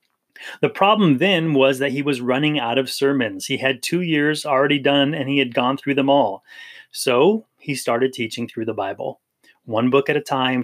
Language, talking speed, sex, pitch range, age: English, 205 wpm, male, 125-150 Hz, 30-49